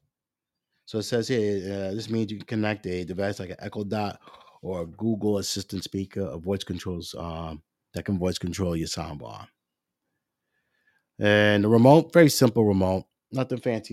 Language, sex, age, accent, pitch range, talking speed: English, male, 30-49, American, 95-110 Hz, 170 wpm